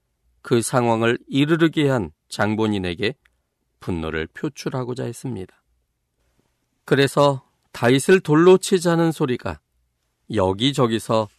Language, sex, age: Korean, male, 40-59